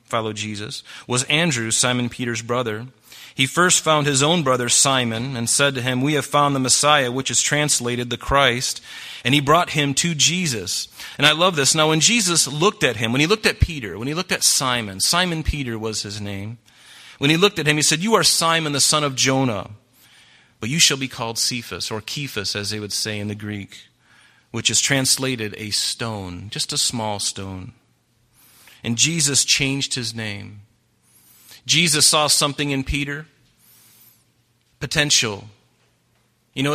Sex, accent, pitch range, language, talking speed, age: male, American, 120-155 Hz, English, 180 wpm, 30-49